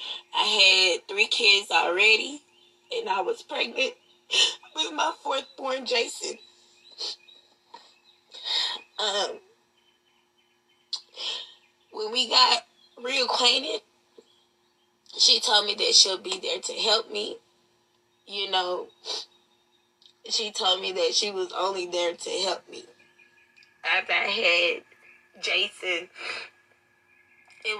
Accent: American